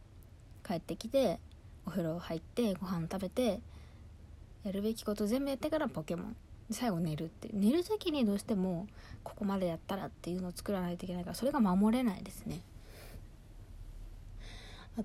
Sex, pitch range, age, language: female, 155-225 Hz, 20-39, Japanese